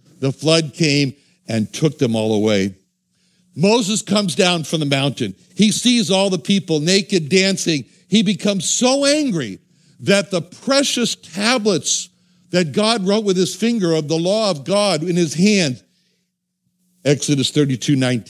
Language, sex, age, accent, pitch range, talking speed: English, male, 60-79, American, 130-190 Hz, 150 wpm